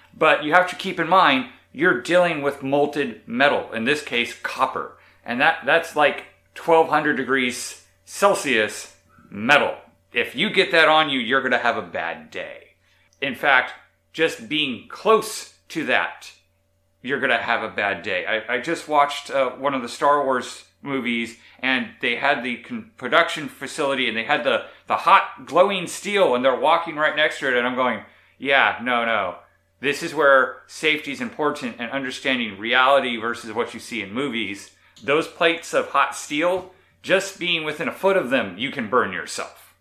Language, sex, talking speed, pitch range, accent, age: English, male, 180 wpm, 120-165 Hz, American, 30-49